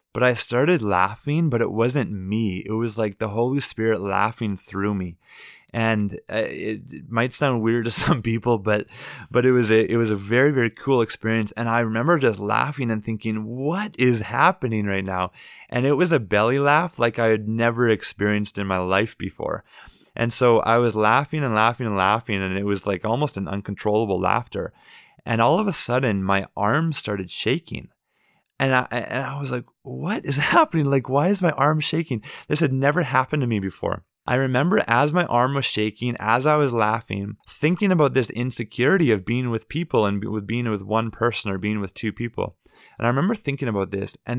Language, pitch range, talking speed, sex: English, 105-130 Hz, 200 wpm, male